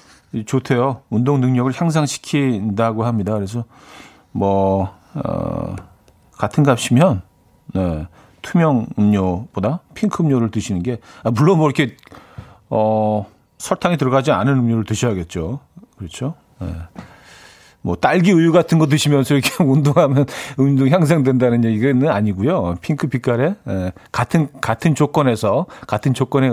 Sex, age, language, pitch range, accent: male, 40-59, Korean, 105-145 Hz, native